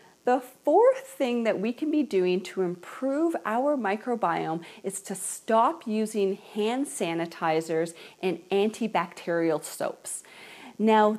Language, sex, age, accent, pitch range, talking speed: English, female, 40-59, American, 170-230 Hz, 120 wpm